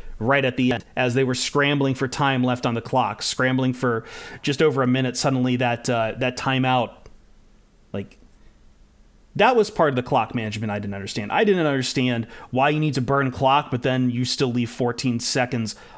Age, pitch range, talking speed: 30-49, 125-160 Hz, 195 wpm